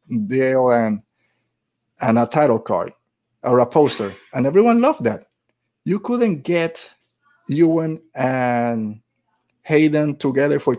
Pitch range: 125-160 Hz